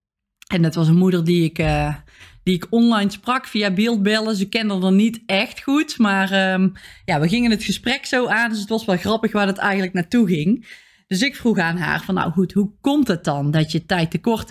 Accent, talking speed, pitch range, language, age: Dutch, 230 wpm, 175-225 Hz, Dutch, 20-39